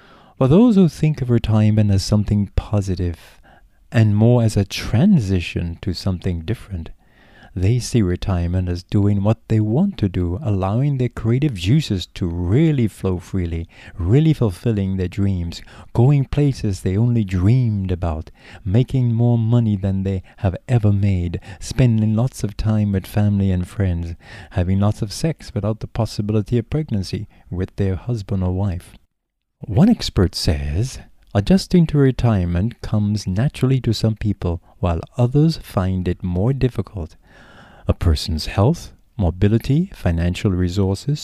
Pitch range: 95-120 Hz